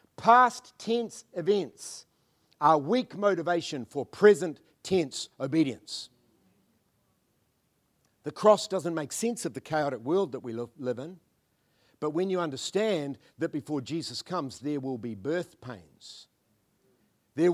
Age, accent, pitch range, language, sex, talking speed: 60-79, Australian, 130-180 Hz, English, male, 125 wpm